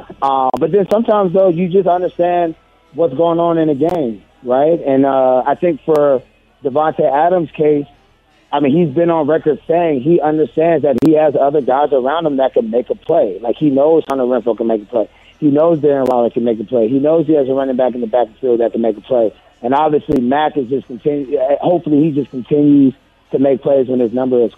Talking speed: 235 wpm